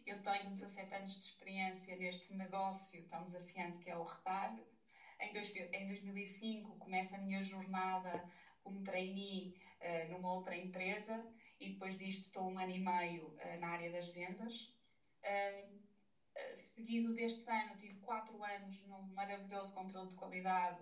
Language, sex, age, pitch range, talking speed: Portuguese, female, 20-39, 185-225 Hz, 145 wpm